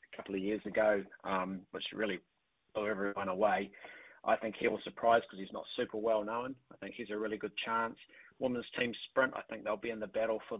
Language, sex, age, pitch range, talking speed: English, male, 30-49, 105-120 Hz, 220 wpm